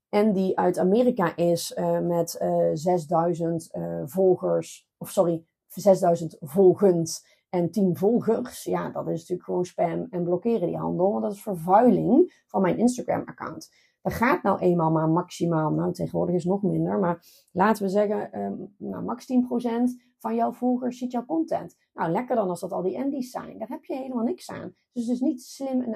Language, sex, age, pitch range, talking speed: Dutch, female, 30-49, 185-250 Hz, 190 wpm